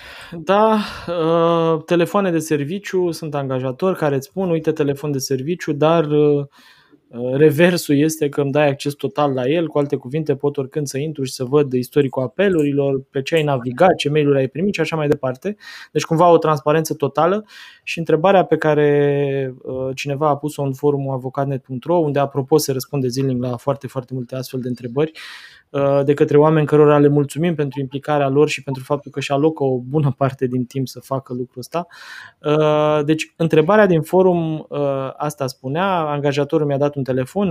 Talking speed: 175 wpm